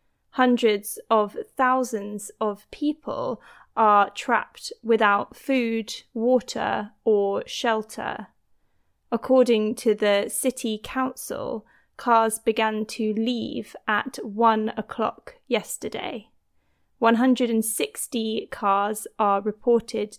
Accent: British